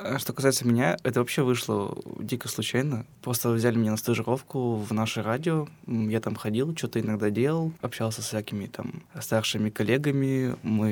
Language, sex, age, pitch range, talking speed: Russian, male, 20-39, 115-135 Hz, 160 wpm